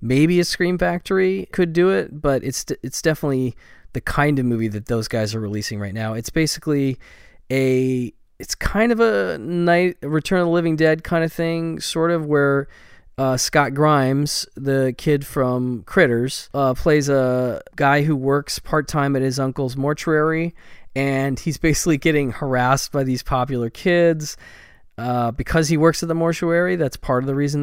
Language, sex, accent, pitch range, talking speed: English, male, American, 120-155 Hz, 175 wpm